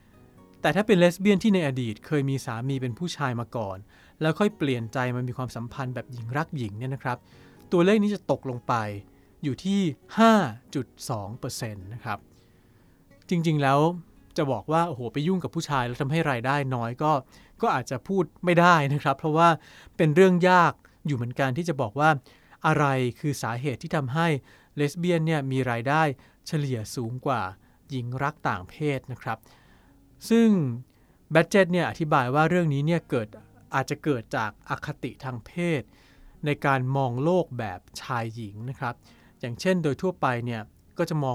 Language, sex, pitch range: Thai, male, 125-165 Hz